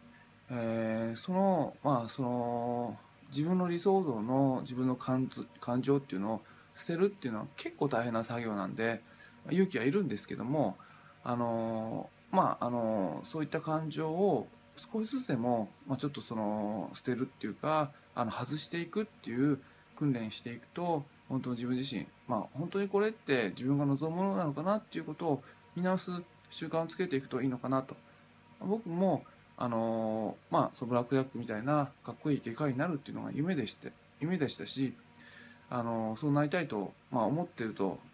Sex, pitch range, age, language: male, 115-155 Hz, 20-39, Japanese